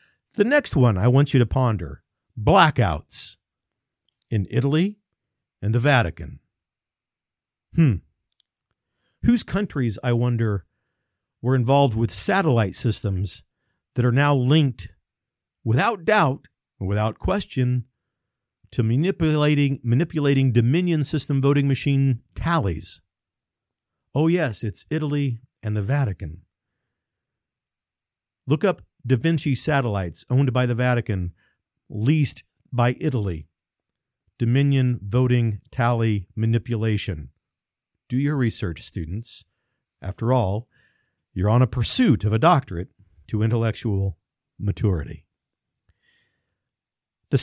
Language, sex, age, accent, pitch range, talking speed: English, male, 50-69, American, 100-140 Hz, 100 wpm